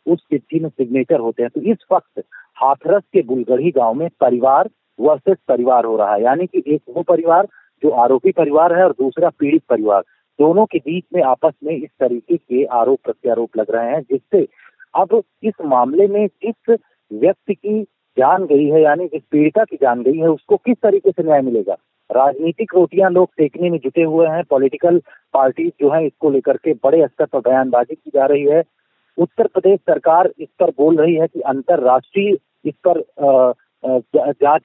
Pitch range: 145-190 Hz